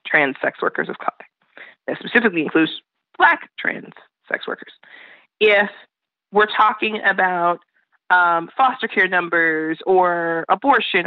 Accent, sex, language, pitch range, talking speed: American, female, English, 170-225 Hz, 120 wpm